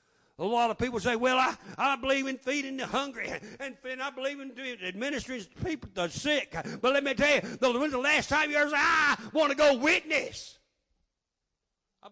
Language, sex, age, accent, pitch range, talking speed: English, male, 50-69, American, 225-315 Hz, 205 wpm